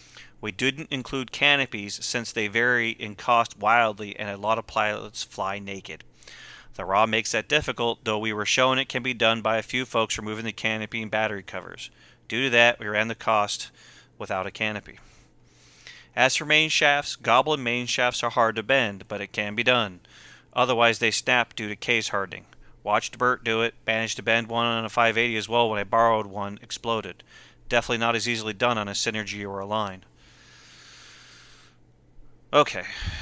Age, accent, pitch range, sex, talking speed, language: 40-59, American, 105-120 Hz, male, 185 wpm, English